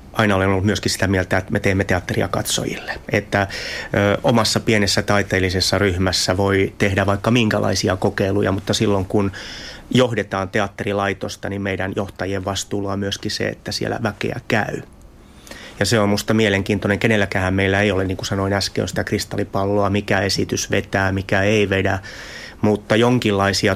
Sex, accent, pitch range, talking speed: male, native, 100-110 Hz, 150 wpm